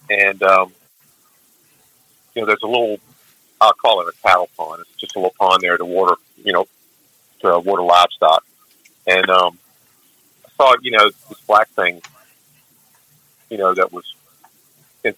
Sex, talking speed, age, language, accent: male, 160 wpm, 50-69, English, American